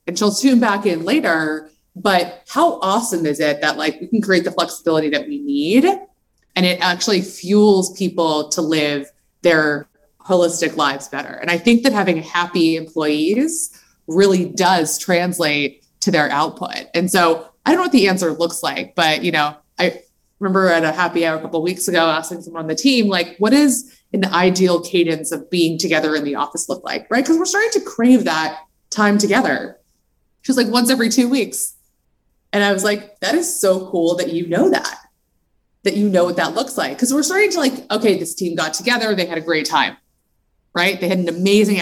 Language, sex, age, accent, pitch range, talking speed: English, female, 20-39, American, 165-220 Hz, 205 wpm